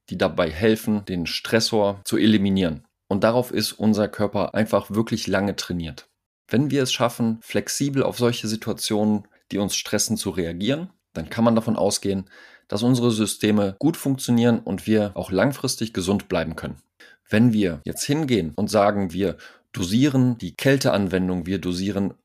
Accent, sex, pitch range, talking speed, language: German, male, 95-120 Hz, 155 wpm, German